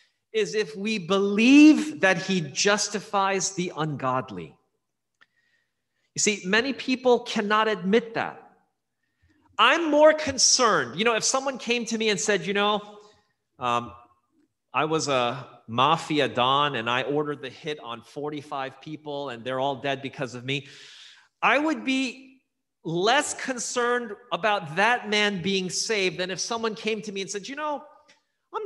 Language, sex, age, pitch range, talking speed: English, male, 30-49, 160-240 Hz, 150 wpm